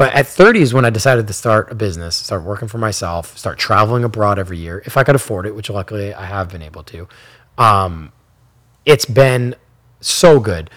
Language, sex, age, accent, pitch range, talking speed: English, male, 20-39, American, 100-135 Hz, 205 wpm